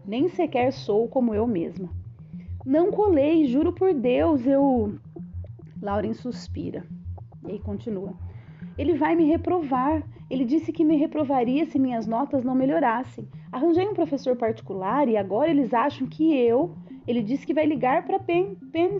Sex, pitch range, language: female, 210-315 Hz, Portuguese